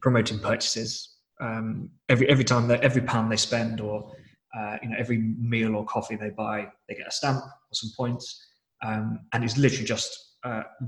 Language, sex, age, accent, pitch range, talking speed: English, male, 20-39, British, 110-120 Hz, 190 wpm